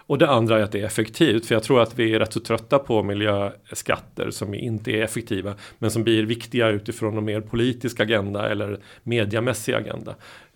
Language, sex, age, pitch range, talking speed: Swedish, male, 40-59, 105-120 Hz, 200 wpm